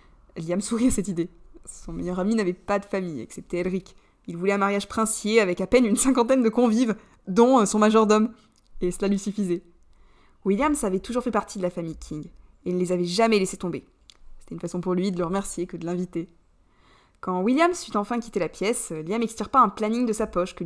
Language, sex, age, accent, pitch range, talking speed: French, female, 20-39, French, 180-255 Hz, 220 wpm